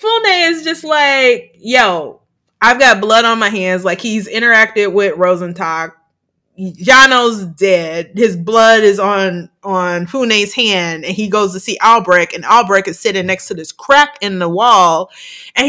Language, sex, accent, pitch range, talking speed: English, female, American, 185-265 Hz, 165 wpm